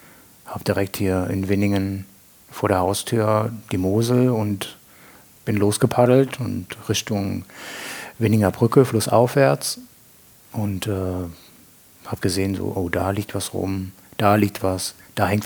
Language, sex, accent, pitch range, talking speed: German, male, German, 95-125 Hz, 130 wpm